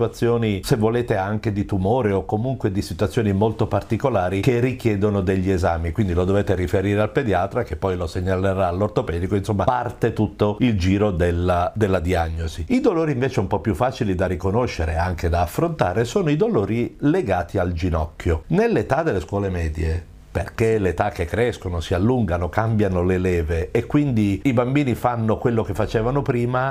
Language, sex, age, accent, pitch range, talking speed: Italian, male, 50-69, native, 95-120 Hz, 170 wpm